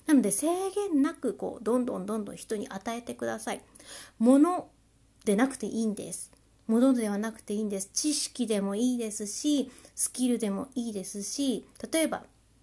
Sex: female